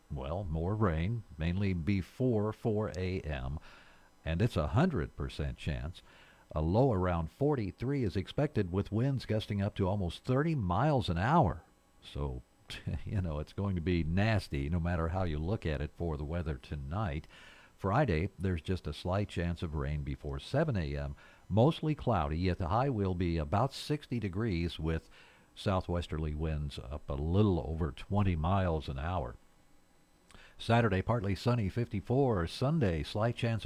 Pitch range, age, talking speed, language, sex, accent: 80-105 Hz, 50-69, 155 wpm, English, male, American